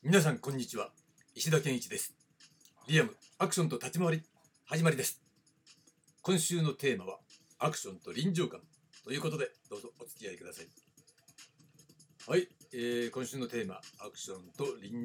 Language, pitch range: Japanese, 125-165 Hz